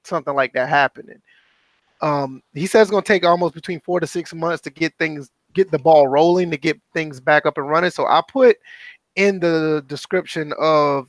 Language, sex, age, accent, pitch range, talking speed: English, male, 20-39, American, 145-185 Hz, 205 wpm